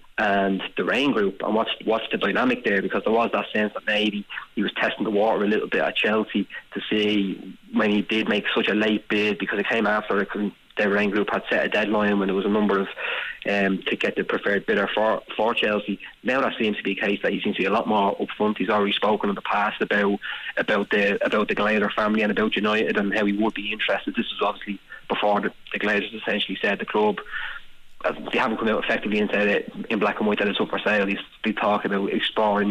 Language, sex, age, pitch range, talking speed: English, male, 20-39, 100-105 Hz, 250 wpm